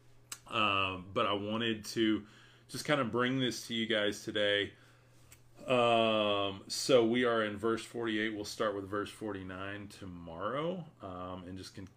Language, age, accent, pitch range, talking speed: English, 30-49, American, 95-120 Hz, 155 wpm